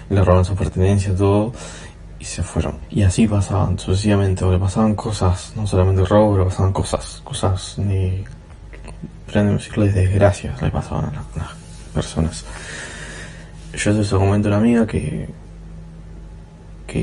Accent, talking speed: Argentinian, 150 wpm